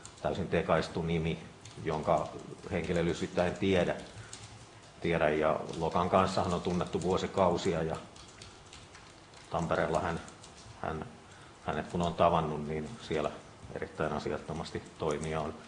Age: 50-69